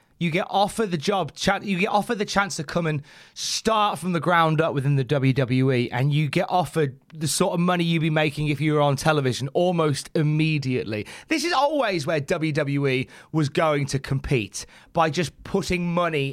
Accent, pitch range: British, 140-200 Hz